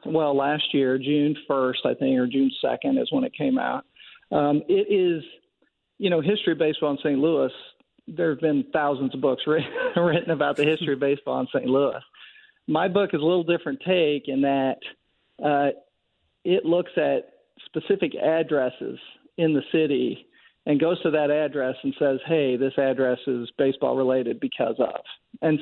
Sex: male